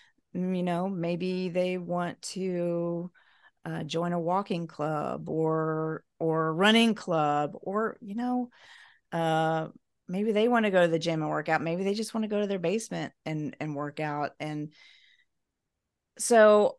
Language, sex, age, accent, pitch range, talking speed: English, female, 40-59, American, 155-200 Hz, 160 wpm